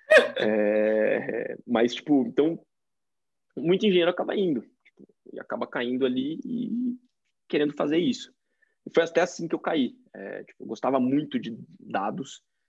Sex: male